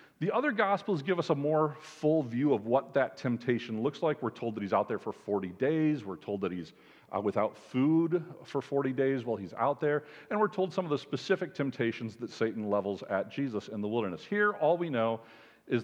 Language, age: English, 40-59